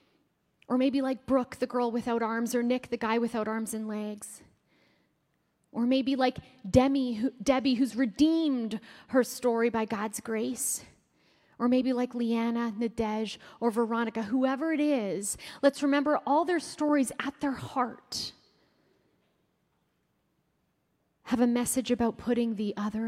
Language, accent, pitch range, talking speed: English, American, 225-270 Hz, 140 wpm